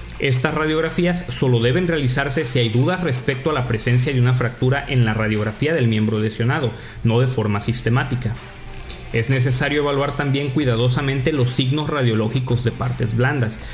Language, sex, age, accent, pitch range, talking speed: Spanish, male, 40-59, Mexican, 115-150 Hz, 155 wpm